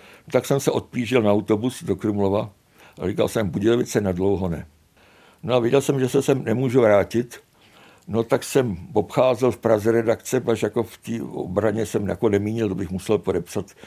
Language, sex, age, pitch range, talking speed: Czech, male, 60-79, 100-130 Hz, 180 wpm